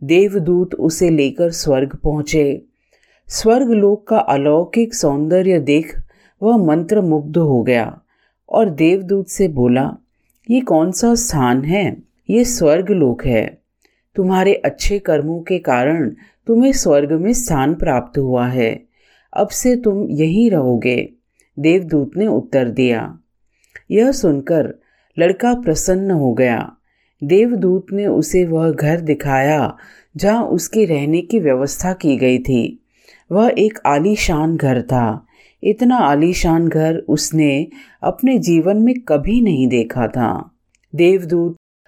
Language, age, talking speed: Hindi, 40-59, 120 wpm